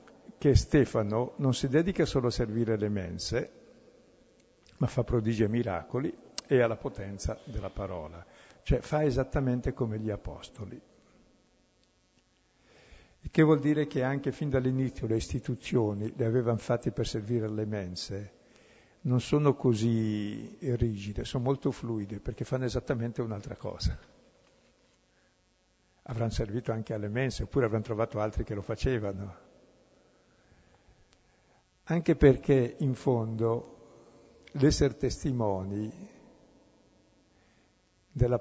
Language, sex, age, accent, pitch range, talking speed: Italian, male, 60-79, native, 105-130 Hz, 115 wpm